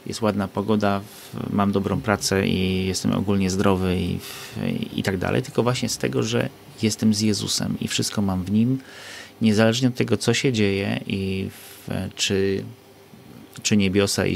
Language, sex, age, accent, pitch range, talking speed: Polish, male, 30-49, native, 100-115 Hz, 160 wpm